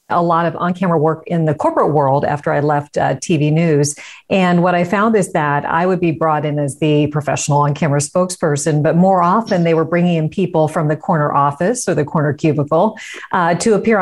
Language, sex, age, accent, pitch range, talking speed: English, female, 50-69, American, 155-190 Hz, 215 wpm